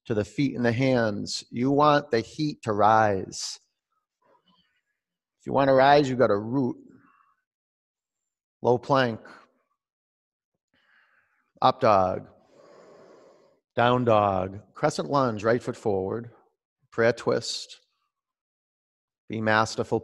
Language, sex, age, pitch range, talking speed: English, male, 40-59, 105-175 Hz, 110 wpm